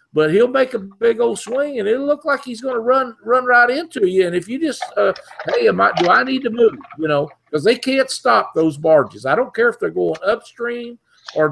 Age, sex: 50-69, male